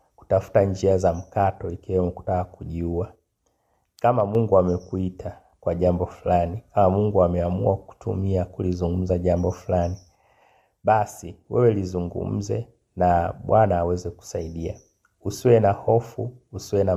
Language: Swahili